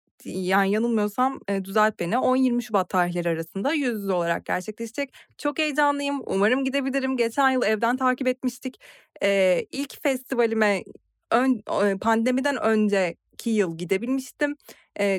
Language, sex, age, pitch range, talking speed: Turkish, female, 30-49, 195-255 Hz, 120 wpm